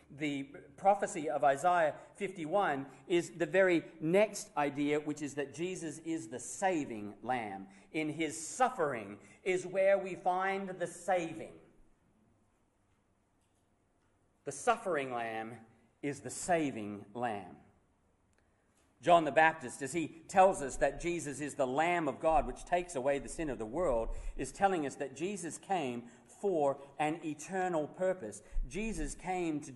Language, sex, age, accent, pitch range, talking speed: English, male, 40-59, Australian, 125-175 Hz, 140 wpm